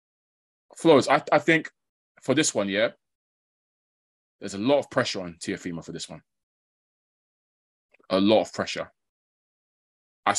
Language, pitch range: English, 85-110 Hz